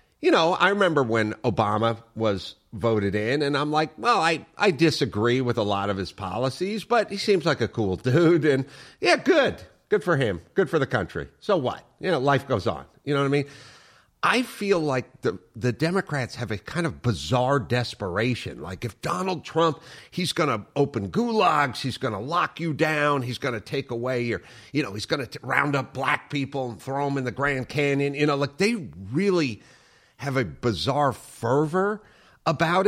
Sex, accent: male, American